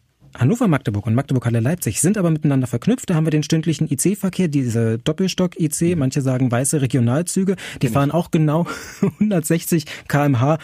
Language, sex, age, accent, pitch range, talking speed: German, male, 30-49, German, 125-165 Hz, 140 wpm